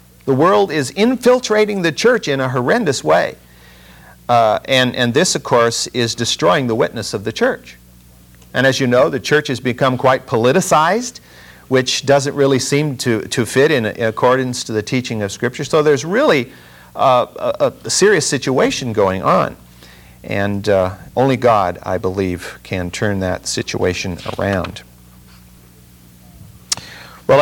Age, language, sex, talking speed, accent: 50-69, English, male, 155 wpm, American